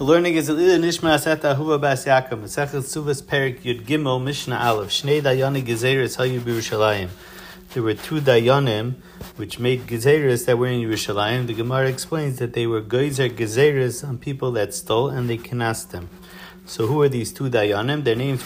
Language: English